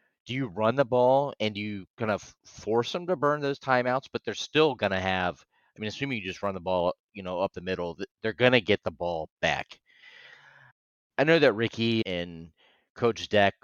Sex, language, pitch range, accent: male, English, 90-115 Hz, American